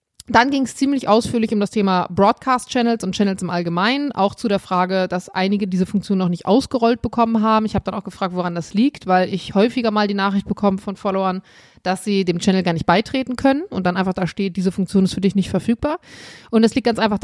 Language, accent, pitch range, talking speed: German, German, 190-230 Hz, 235 wpm